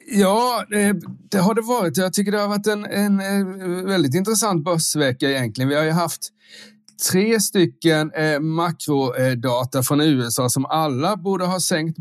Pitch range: 120-165 Hz